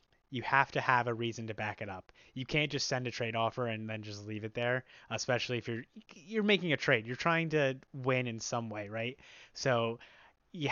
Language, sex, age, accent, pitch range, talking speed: English, male, 20-39, American, 115-140 Hz, 225 wpm